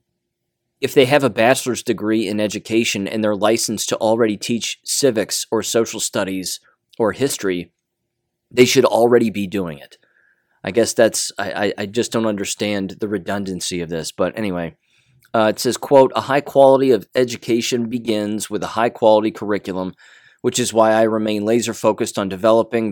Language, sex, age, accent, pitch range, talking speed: English, male, 30-49, American, 100-120 Hz, 165 wpm